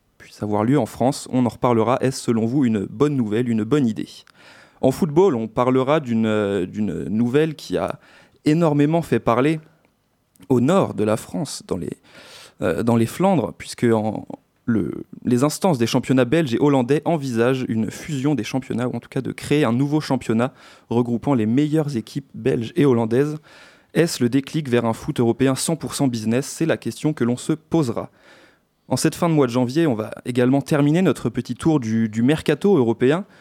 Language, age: French, 30-49